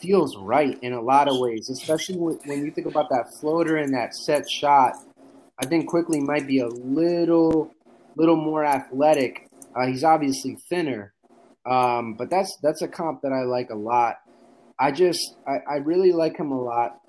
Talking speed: 185 wpm